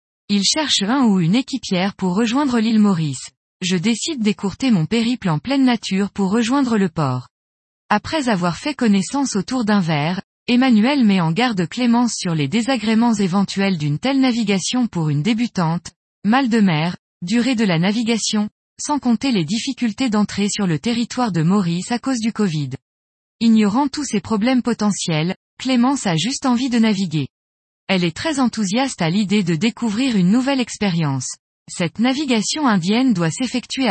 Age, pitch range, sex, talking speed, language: 20-39, 180-245 Hz, female, 165 wpm, French